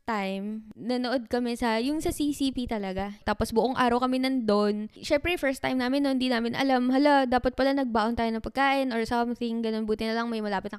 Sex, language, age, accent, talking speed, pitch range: female, Filipino, 20-39, native, 205 wpm, 205-275 Hz